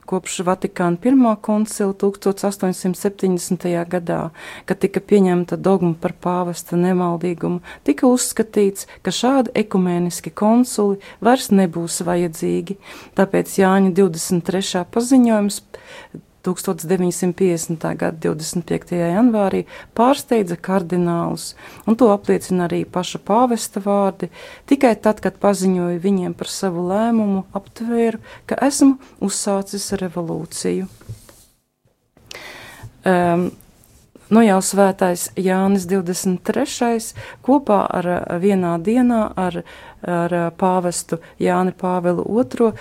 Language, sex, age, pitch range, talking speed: English, female, 40-59, 175-220 Hz, 95 wpm